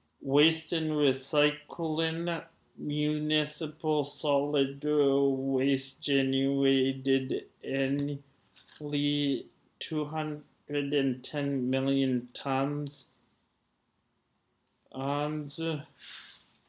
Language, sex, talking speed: English, male, 45 wpm